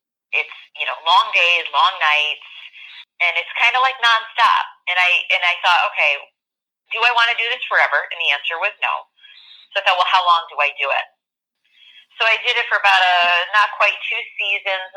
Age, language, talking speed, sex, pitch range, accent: 30-49, English, 210 wpm, female, 165-215 Hz, American